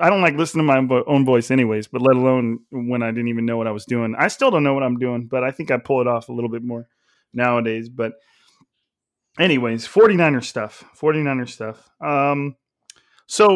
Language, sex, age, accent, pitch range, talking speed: English, male, 30-49, American, 125-150 Hz, 210 wpm